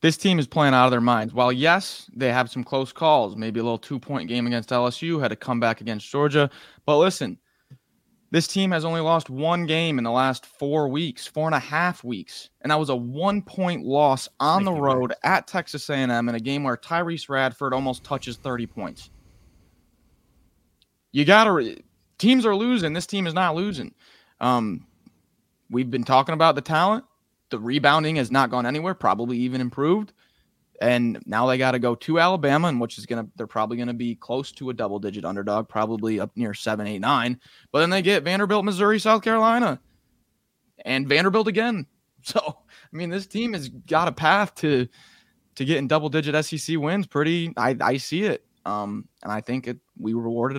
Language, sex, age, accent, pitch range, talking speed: English, male, 20-39, American, 120-165 Hz, 185 wpm